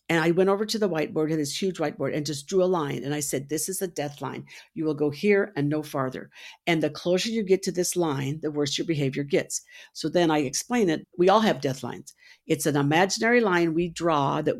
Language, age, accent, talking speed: English, 50-69, American, 245 wpm